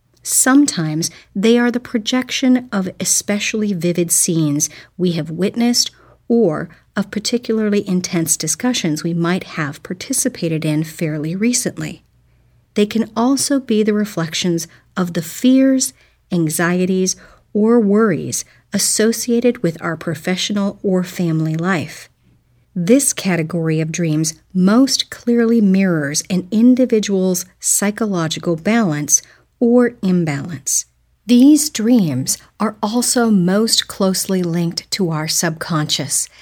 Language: English